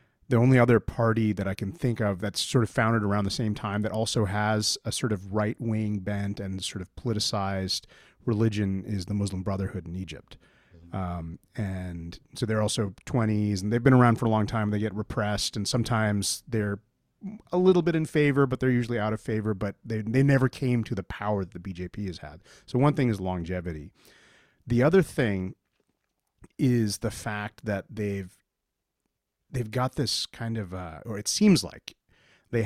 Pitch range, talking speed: 100-125 Hz, 190 wpm